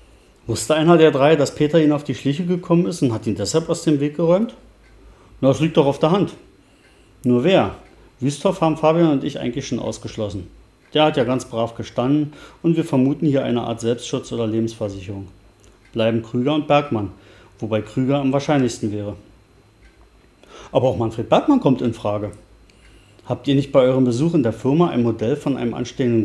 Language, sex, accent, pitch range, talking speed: German, male, German, 110-150 Hz, 185 wpm